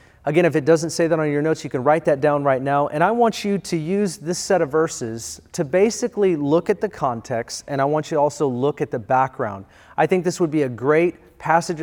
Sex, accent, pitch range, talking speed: male, American, 135-170 Hz, 255 wpm